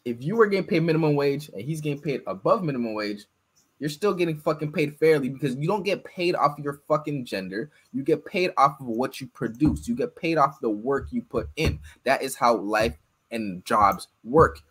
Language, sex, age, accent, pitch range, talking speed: English, male, 20-39, American, 140-180 Hz, 220 wpm